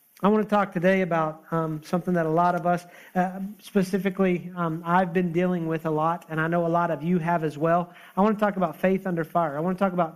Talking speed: 265 wpm